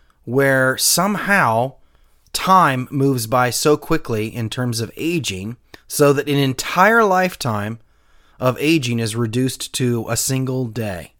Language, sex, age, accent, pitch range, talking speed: English, male, 30-49, American, 115-160 Hz, 130 wpm